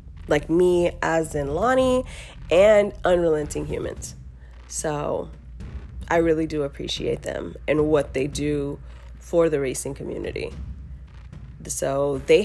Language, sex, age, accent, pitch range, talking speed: English, female, 20-39, American, 140-175 Hz, 115 wpm